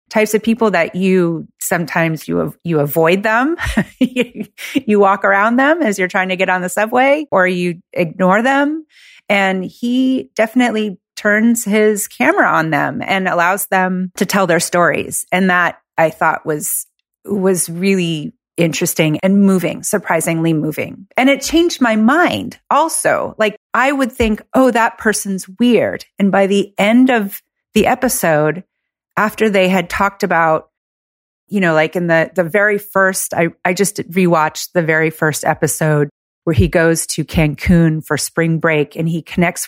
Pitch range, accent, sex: 165-215 Hz, American, female